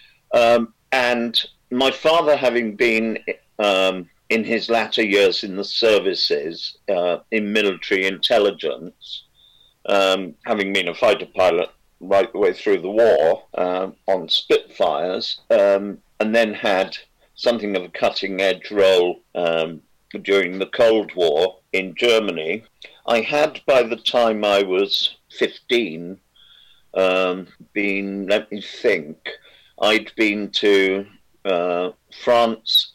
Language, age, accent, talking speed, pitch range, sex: English, 50-69, British, 120 wpm, 95-145 Hz, male